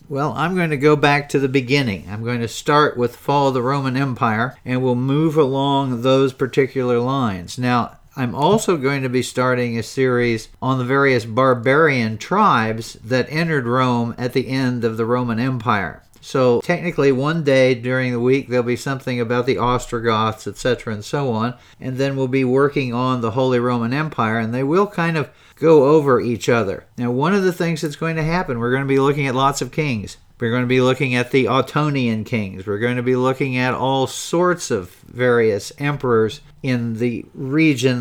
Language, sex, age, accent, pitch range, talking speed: English, male, 50-69, American, 120-140 Hz, 200 wpm